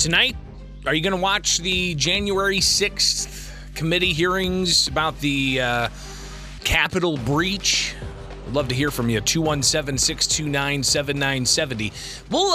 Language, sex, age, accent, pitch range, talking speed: English, male, 30-49, American, 110-160 Hz, 115 wpm